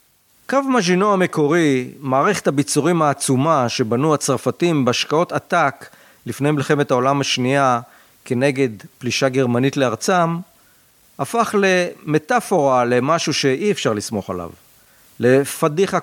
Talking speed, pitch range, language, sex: 95 wpm, 120-165 Hz, Hebrew, male